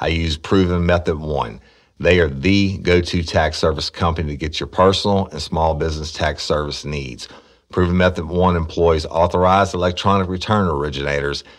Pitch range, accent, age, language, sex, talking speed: 85-100 Hz, American, 50-69, English, male, 155 wpm